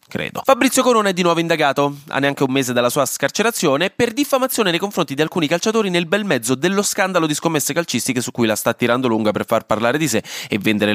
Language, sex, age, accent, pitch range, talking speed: Italian, male, 20-39, native, 120-185 Hz, 230 wpm